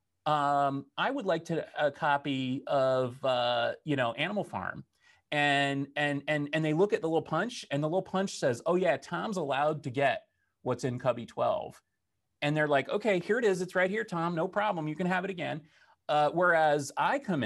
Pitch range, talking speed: 135-175 Hz, 205 wpm